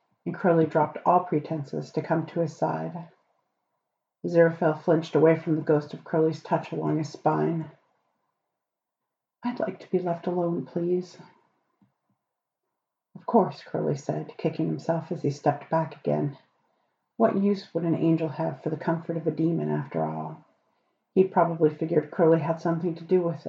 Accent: American